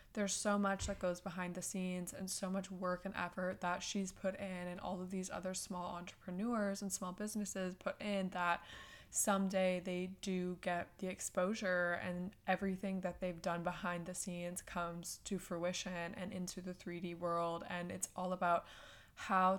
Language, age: English, 20-39